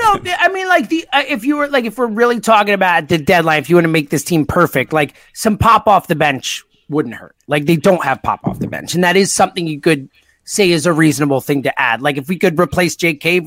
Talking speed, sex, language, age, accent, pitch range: 270 wpm, male, English, 30-49, American, 155-250 Hz